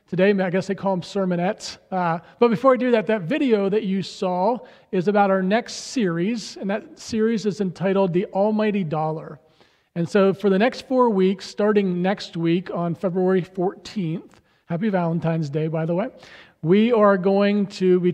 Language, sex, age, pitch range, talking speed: English, male, 40-59, 175-220 Hz, 180 wpm